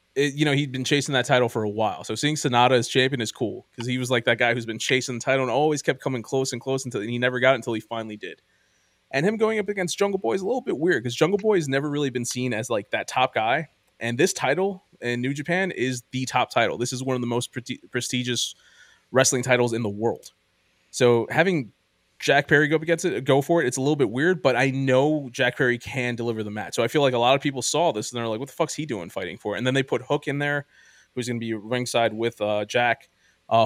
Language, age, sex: English, 20-39, male